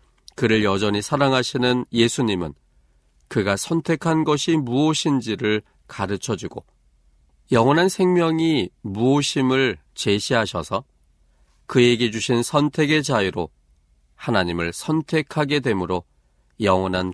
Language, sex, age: Korean, male, 40-59